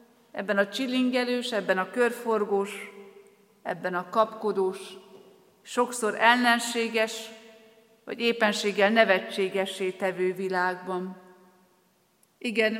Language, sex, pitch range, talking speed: Hungarian, female, 195-240 Hz, 80 wpm